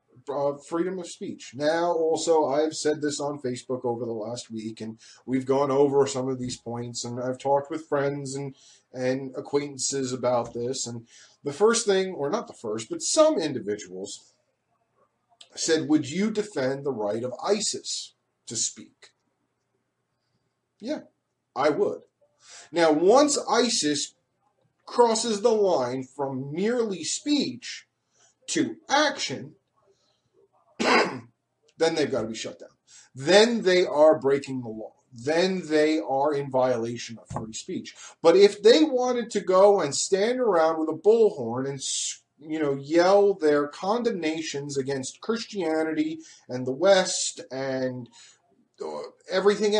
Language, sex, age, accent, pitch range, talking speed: English, male, 40-59, American, 135-210 Hz, 135 wpm